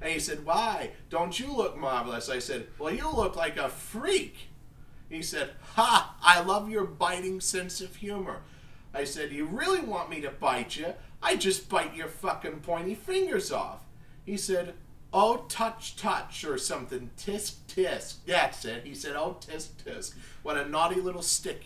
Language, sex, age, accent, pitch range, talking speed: English, male, 40-59, American, 150-190 Hz, 175 wpm